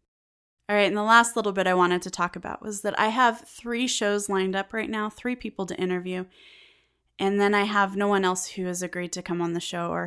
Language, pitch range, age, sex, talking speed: English, 180-225 Hz, 20-39, female, 250 wpm